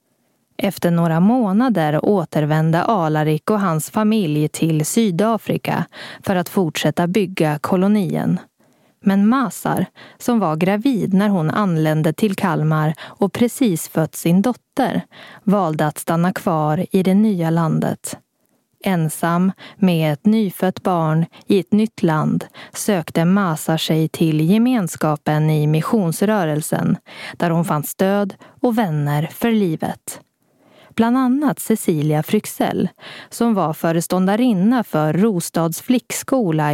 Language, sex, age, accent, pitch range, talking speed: Swedish, female, 20-39, native, 155-210 Hz, 120 wpm